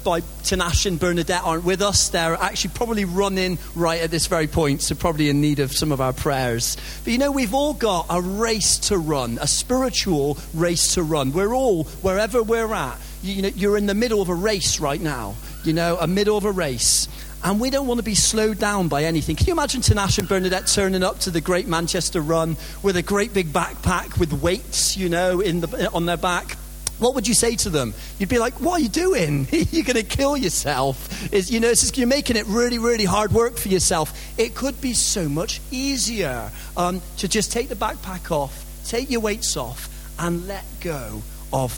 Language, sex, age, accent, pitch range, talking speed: English, male, 40-59, British, 160-220 Hz, 215 wpm